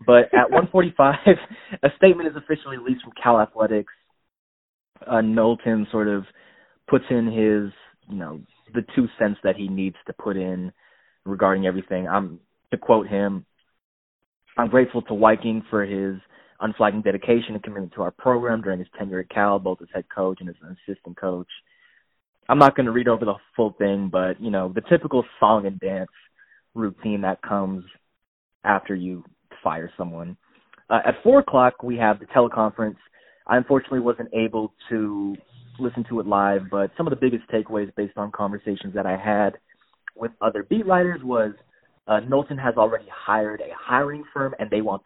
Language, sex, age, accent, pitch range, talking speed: English, male, 20-39, American, 100-125 Hz, 175 wpm